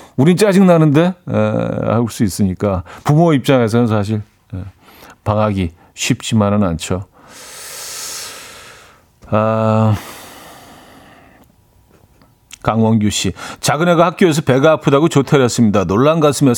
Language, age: Korean, 40-59